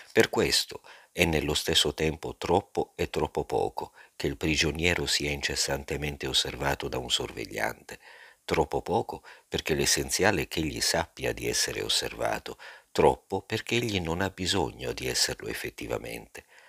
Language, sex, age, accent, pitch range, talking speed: Italian, male, 50-69, native, 75-95 Hz, 140 wpm